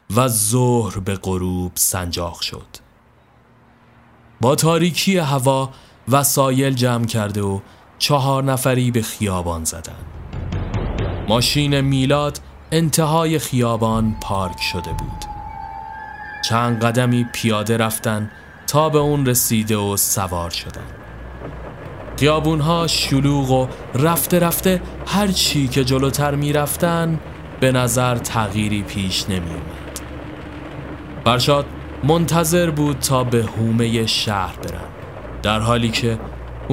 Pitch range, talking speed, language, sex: 100-140 Hz, 100 wpm, Persian, male